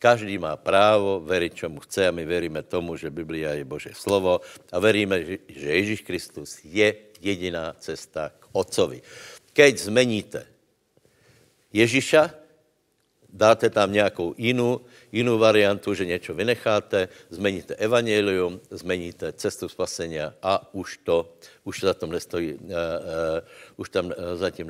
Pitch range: 90-115 Hz